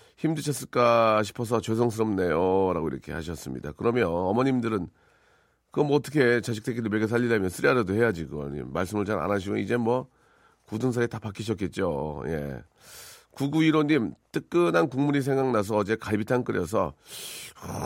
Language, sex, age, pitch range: Korean, male, 40-59, 105-140 Hz